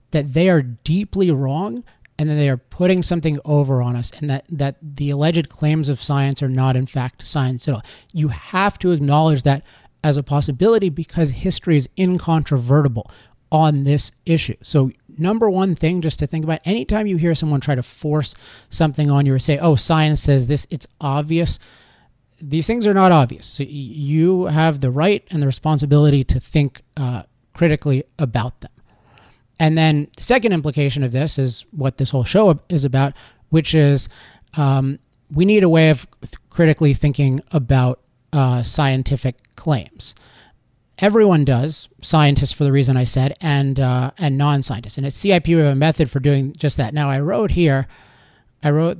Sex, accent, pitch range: male, American, 130-160 Hz